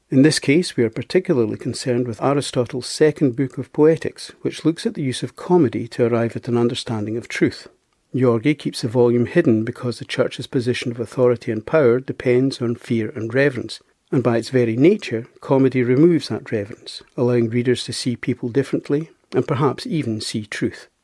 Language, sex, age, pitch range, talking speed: English, male, 60-79, 120-140 Hz, 185 wpm